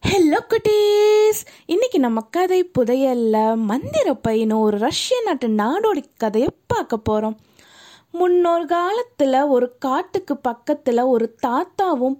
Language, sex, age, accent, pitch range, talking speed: Tamil, female, 20-39, native, 245-340 Hz, 110 wpm